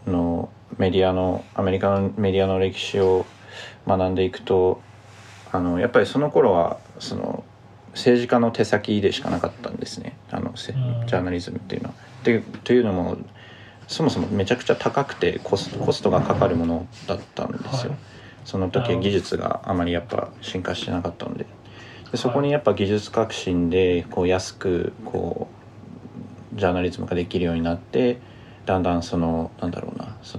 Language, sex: Japanese, male